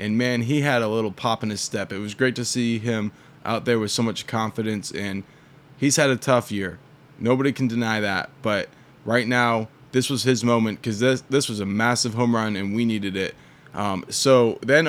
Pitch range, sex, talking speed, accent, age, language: 115-145 Hz, male, 220 wpm, American, 20-39, English